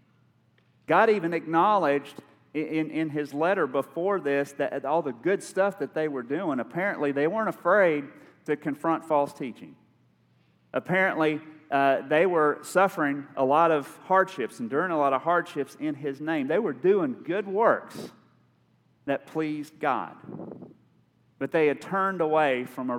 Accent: American